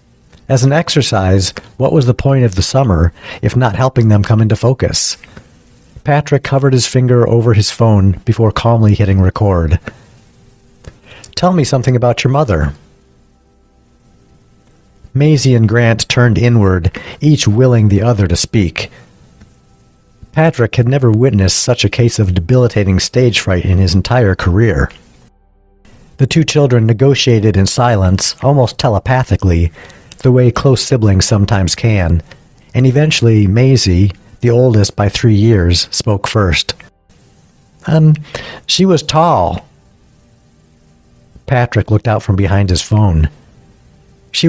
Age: 50-69